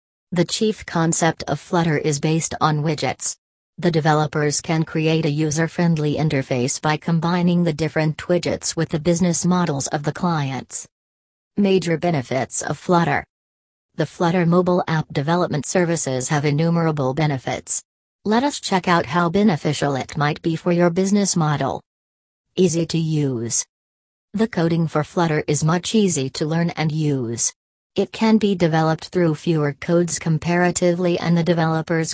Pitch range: 145-175 Hz